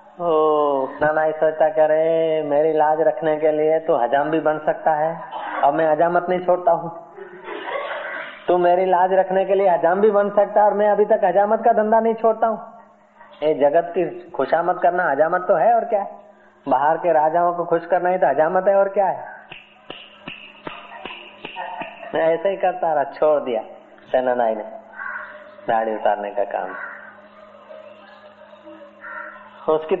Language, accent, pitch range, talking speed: Hindi, native, 155-200 Hz, 160 wpm